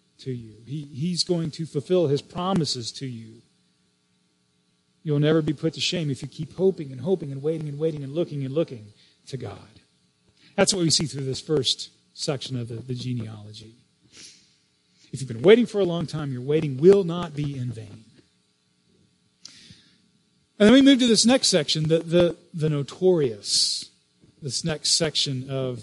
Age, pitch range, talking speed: 40-59, 125-165 Hz, 175 wpm